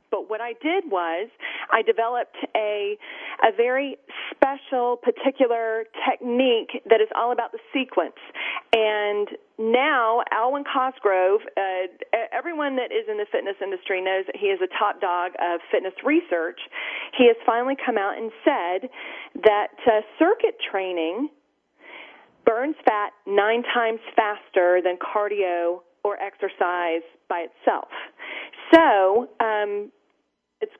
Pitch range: 200-275 Hz